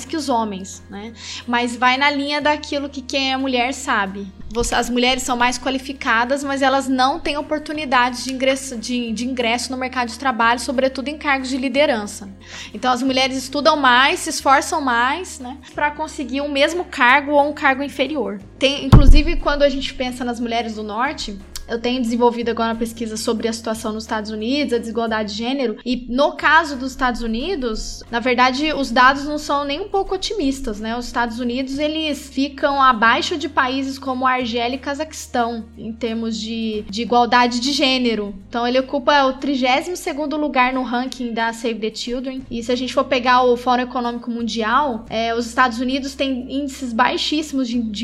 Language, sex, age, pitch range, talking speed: Portuguese, female, 10-29, 235-280 Hz, 185 wpm